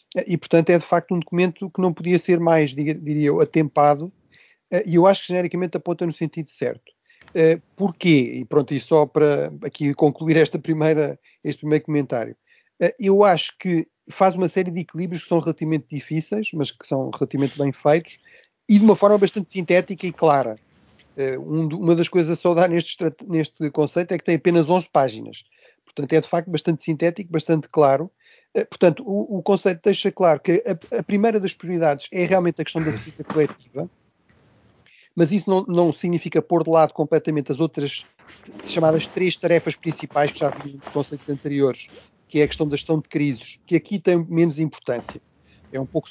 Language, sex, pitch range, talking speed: Portuguese, male, 150-180 Hz, 180 wpm